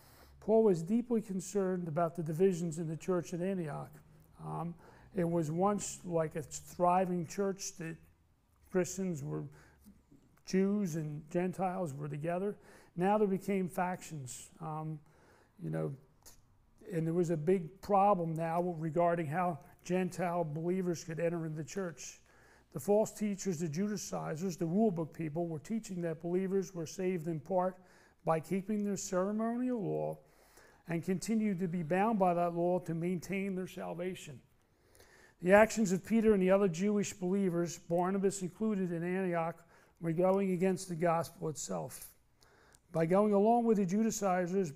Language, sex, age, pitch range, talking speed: English, male, 40-59, 165-195 Hz, 145 wpm